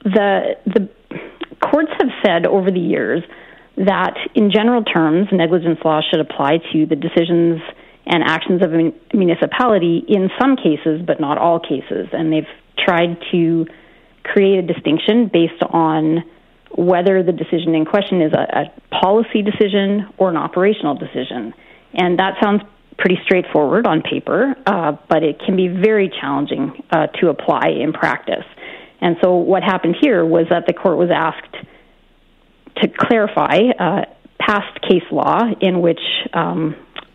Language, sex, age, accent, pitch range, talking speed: English, female, 40-59, American, 165-200 Hz, 150 wpm